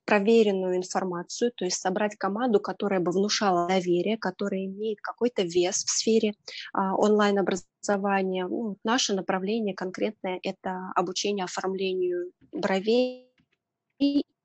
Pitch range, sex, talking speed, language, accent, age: 185-225 Hz, female, 110 wpm, Russian, native, 20-39